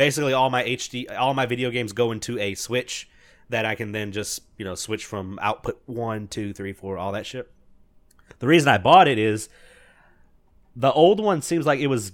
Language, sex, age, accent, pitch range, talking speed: English, male, 30-49, American, 100-130 Hz, 210 wpm